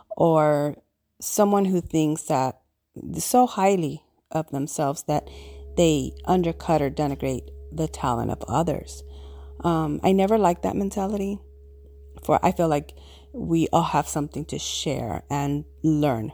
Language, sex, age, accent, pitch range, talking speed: English, female, 40-59, American, 135-180 Hz, 130 wpm